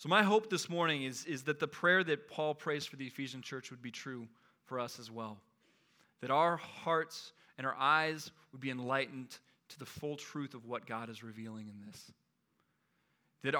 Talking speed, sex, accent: 200 wpm, male, American